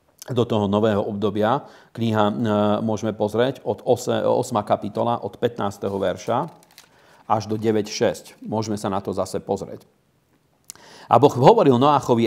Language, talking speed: Slovak, 130 wpm